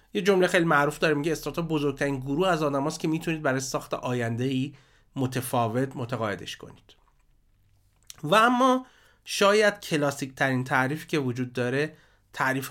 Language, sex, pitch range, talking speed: Persian, male, 120-150 Hz, 130 wpm